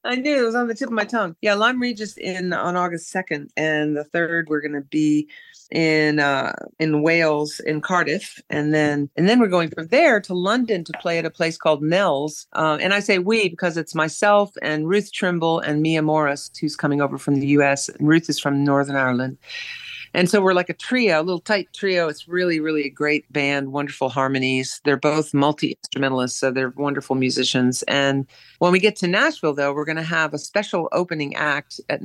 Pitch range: 140-175 Hz